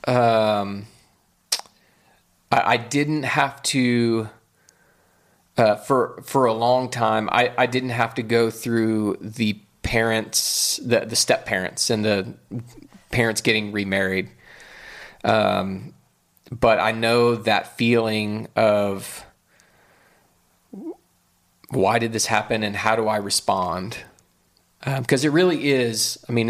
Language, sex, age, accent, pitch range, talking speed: English, male, 30-49, American, 110-130 Hz, 120 wpm